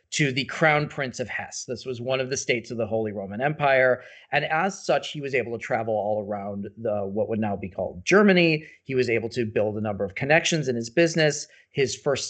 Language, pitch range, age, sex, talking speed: English, 120-150 Hz, 40-59, male, 235 wpm